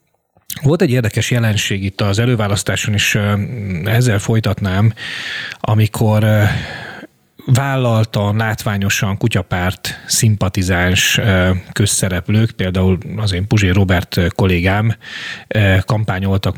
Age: 30-49